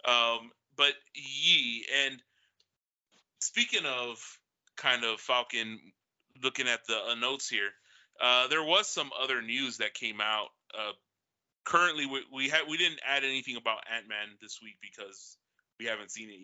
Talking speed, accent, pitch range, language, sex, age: 155 wpm, American, 110-130 Hz, English, male, 30-49